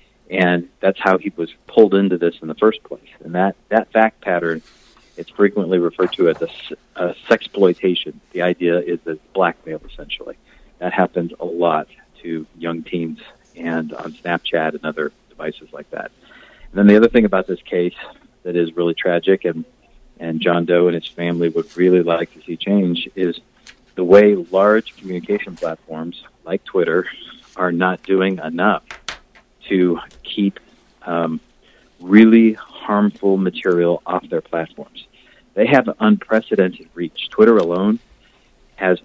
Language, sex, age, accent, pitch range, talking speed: English, male, 40-59, American, 85-105 Hz, 150 wpm